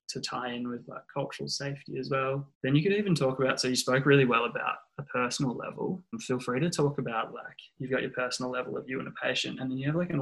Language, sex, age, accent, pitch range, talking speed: English, male, 20-39, Australian, 120-135 Hz, 275 wpm